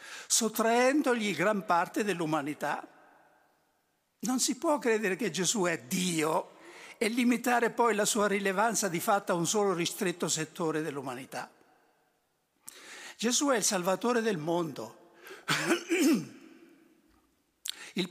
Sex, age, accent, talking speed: male, 60-79, native, 110 wpm